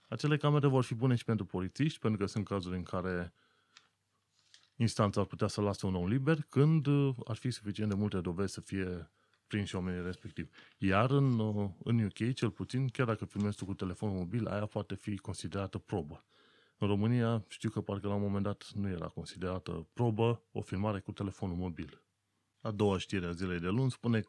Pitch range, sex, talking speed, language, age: 90-115 Hz, male, 190 wpm, Romanian, 30-49